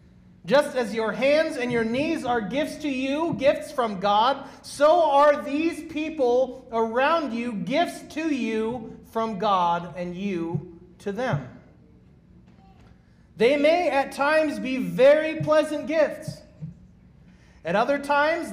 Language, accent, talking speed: English, American, 130 wpm